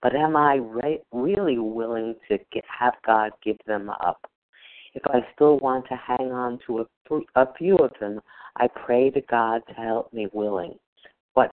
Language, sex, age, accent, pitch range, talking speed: English, female, 50-69, American, 110-135 Hz, 170 wpm